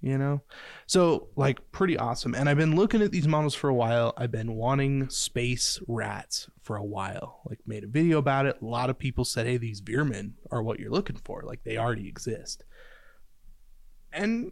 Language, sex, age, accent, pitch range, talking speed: English, male, 20-39, American, 115-145 Hz, 200 wpm